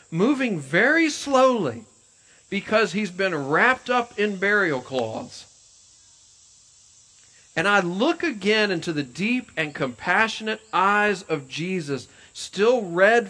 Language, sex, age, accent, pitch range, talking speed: English, male, 40-59, American, 150-225 Hz, 115 wpm